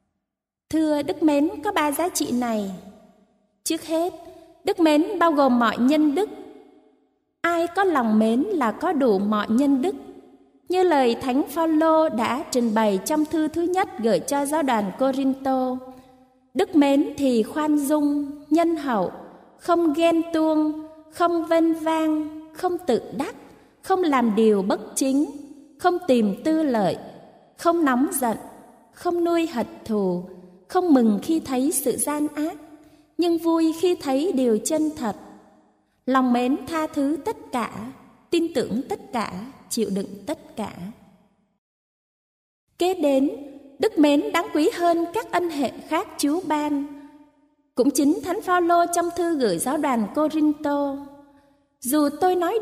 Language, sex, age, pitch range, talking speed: Vietnamese, female, 20-39, 245-330 Hz, 145 wpm